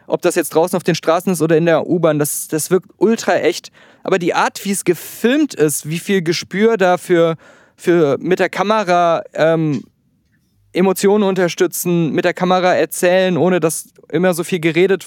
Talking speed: 175 wpm